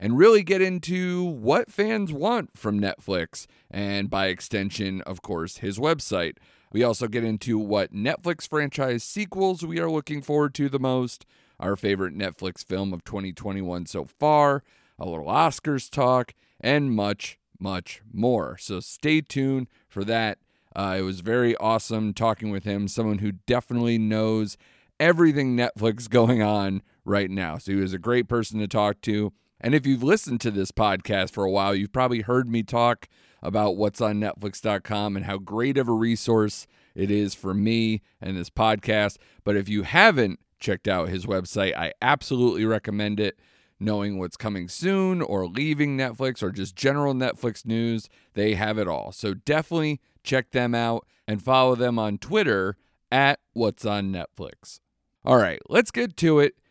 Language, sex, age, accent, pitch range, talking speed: English, male, 30-49, American, 100-130 Hz, 170 wpm